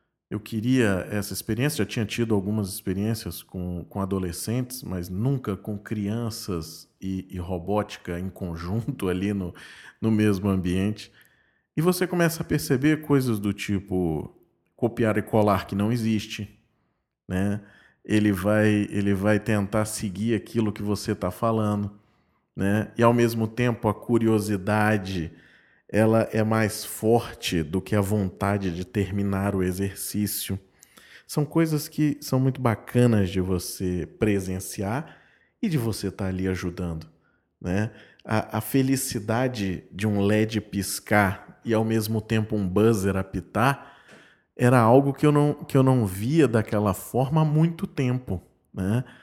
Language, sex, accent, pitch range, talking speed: Portuguese, male, Brazilian, 95-115 Hz, 140 wpm